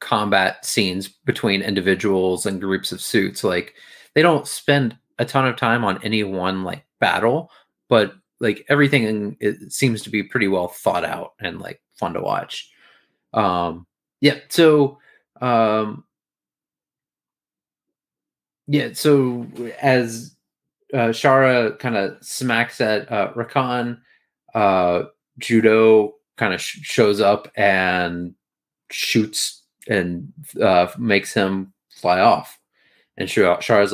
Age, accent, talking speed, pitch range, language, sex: 30-49, American, 125 wpm, 95-120 Hz, English, male